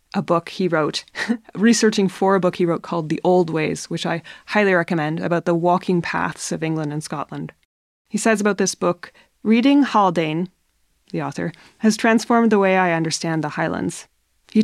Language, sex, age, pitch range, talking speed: English, female, 20-39, 165-200 Hz, 180 wpm